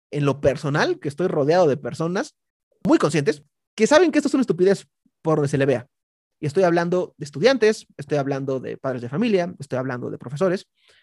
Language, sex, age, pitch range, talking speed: Spanish, male, 30-49, 140-190 Hz, 200 wpm